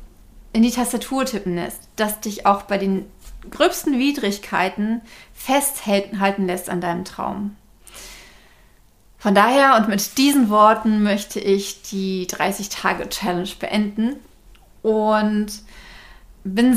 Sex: female